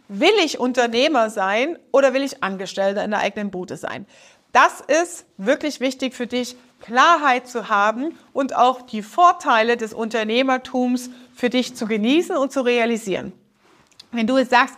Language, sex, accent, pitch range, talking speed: German, female, German, 225-275 Hz, 160 wpm